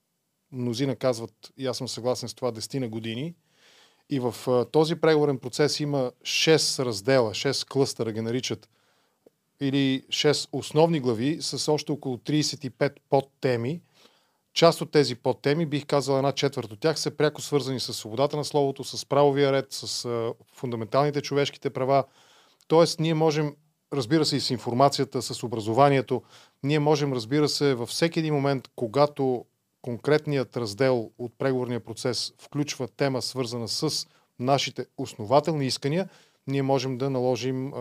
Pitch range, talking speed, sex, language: 125-150 Hz, 145 wpm, male, Bulgarian